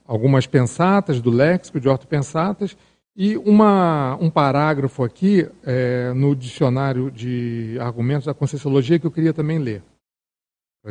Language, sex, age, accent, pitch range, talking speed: Portuguese, male, 40-59, Brazilian, 135-175 Hz, 130 wpm